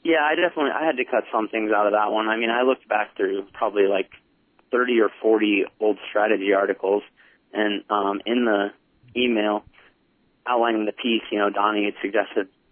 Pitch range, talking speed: 105-125 Hz, 190 wpm